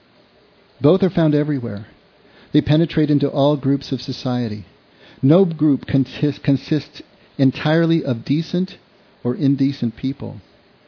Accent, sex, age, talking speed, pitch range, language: American, male, 50-69, 110 wpm, 120-165 Hz, English